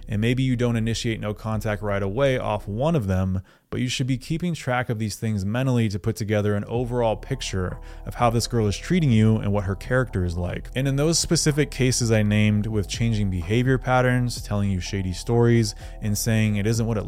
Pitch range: 100-125 Hz